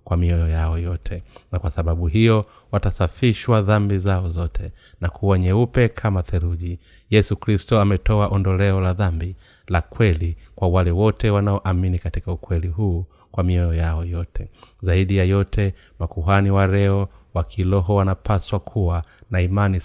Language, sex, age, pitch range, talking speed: Swahili, male, 30-49, 85-105 Hz, 145 wpm